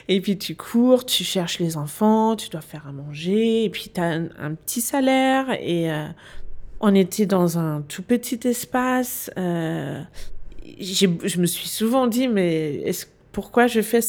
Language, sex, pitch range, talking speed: French, female, 175-225 Hz, 180 wpm